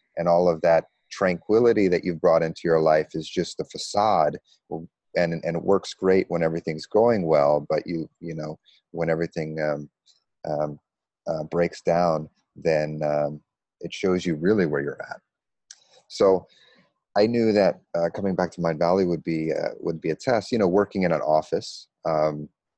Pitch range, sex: 75-90 Hz, male